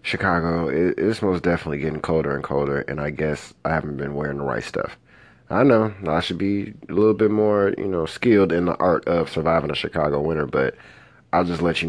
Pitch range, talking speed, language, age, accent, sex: 80-100 Hz, 215 wpm, English, 30-49, American, male